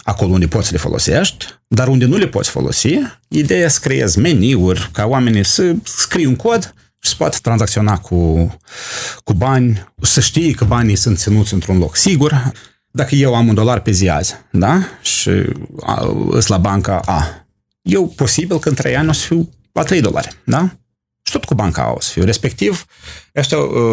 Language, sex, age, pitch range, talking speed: Romanian, male, 30-49, 100-150 Hz, 185 wpm